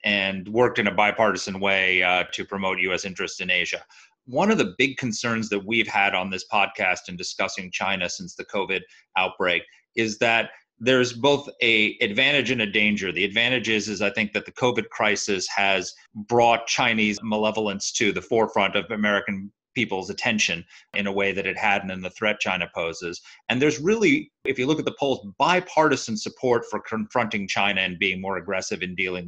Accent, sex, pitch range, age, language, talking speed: American, male, 100-130 Hz, 30-49, English, 190 wpm